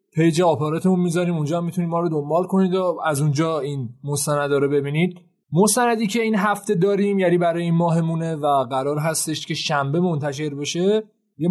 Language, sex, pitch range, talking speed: Persian, male, 160-195 Hz, 170 wpm